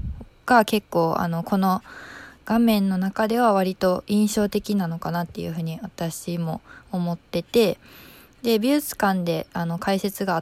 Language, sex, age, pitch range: Japanese, female, 20-39, 180-225 Hz